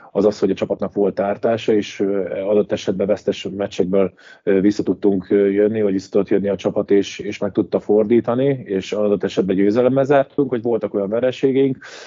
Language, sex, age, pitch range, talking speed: Hungarian, male, 20-39, 100-110 Hz, 175 wpm